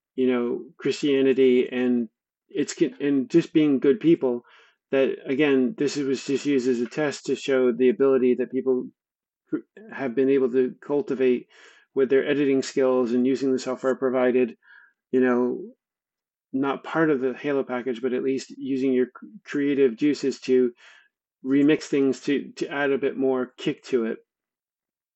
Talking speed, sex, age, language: 155 wpm, male, 40-59, English